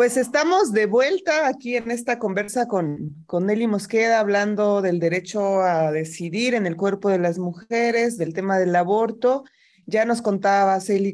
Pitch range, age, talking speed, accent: 180-220 Hz, 30-49, 165 wpm, Mexican